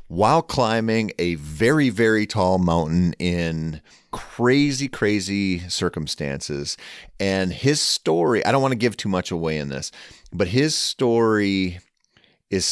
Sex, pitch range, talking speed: male, 80-110 Hz, 130 wpm